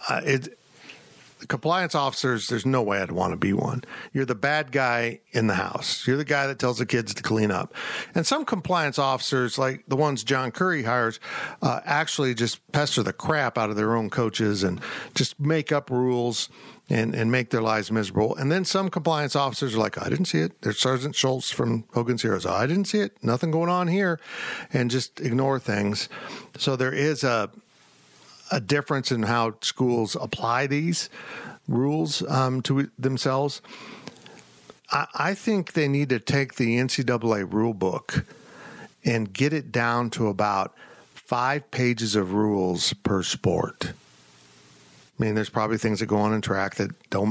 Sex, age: male, 50-69